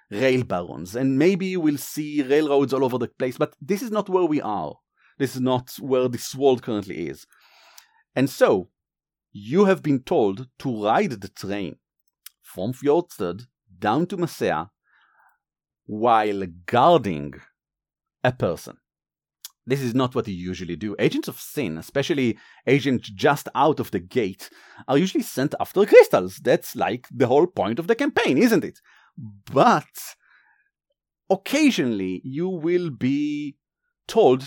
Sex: male